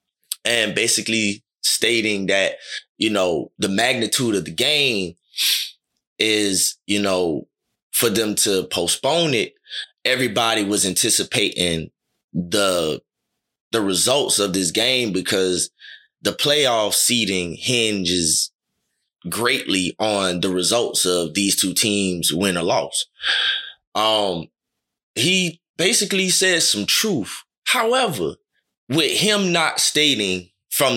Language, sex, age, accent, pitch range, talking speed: English, male, 20-39, American, 95-120 Hz, 110 wpm